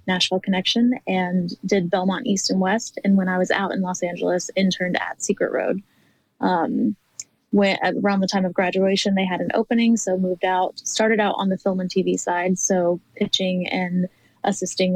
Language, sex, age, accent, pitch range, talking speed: English, female, 20-39, American, 180-205 Hz, 180 wpm